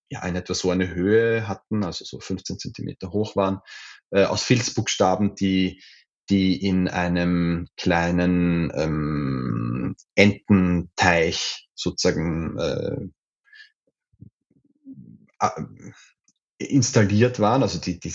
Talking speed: 105 wpm